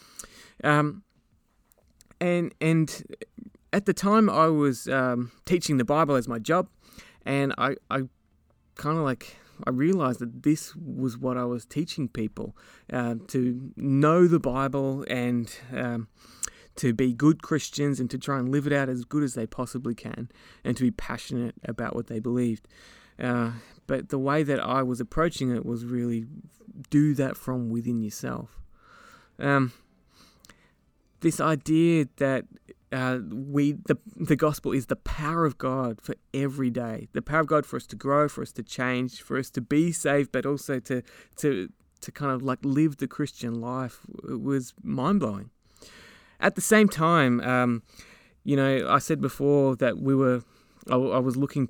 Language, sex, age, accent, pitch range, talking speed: English, male, 20-39, Australian, 125-150 Hz, 170 wpm